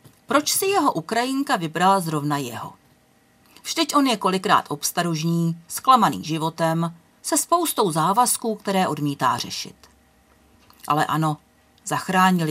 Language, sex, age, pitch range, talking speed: Czech, female, 40-59, 155-235 Hz, 110 wpm